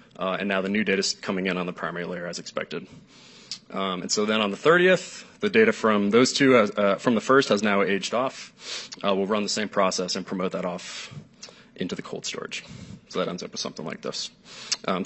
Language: English